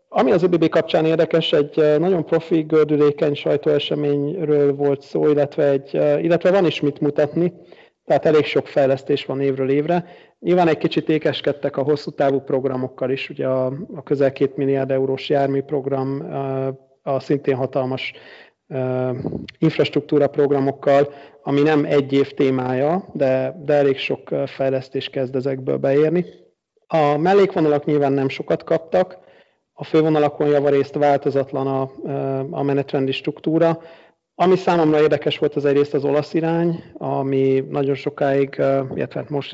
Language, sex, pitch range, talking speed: Hungarian, male, 135-150 Hz, 135 wpm